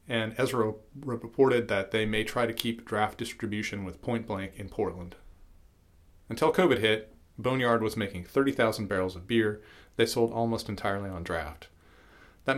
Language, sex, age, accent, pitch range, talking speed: English, male, 40-59, American, 90-115 Hz, 155 wpm